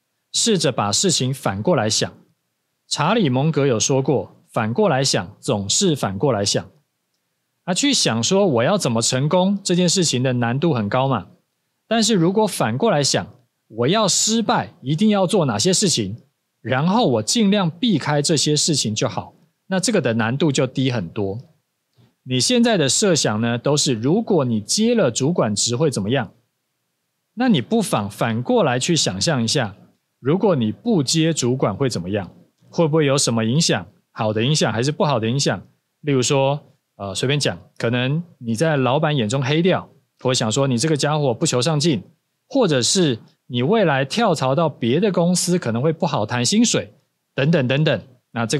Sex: male